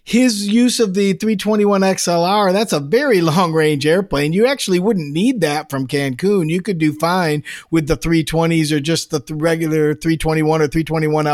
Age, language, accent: 50-69, English, American